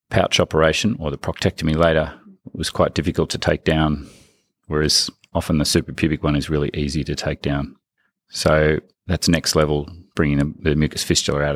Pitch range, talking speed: 75-85 Hz, 170 wpm